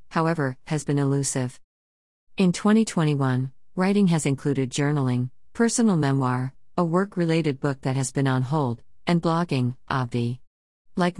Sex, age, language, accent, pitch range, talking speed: female, 50-69, English, American, 130-165 Hz, 130 wpm